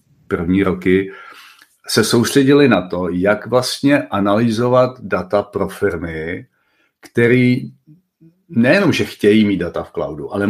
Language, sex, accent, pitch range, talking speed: Czech, male, native, 95-115 Hz, 120 wpm